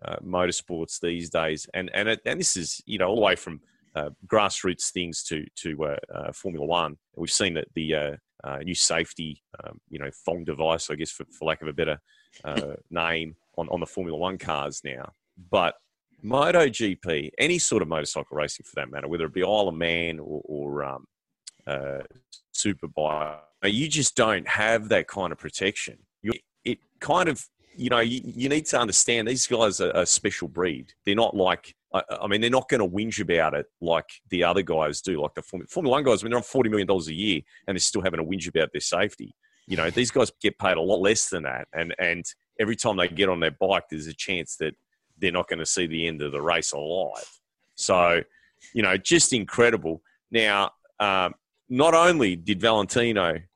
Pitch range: 80-115 Hz